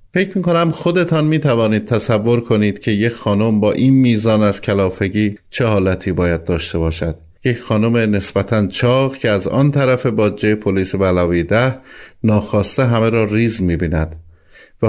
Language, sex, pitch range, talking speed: Persian, male, 95-135 Hz, 155 wpm